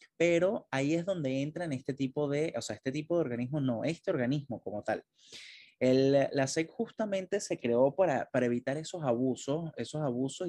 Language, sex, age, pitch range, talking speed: Spanish, male, 20-39, 120-160 Hz, 190 wpm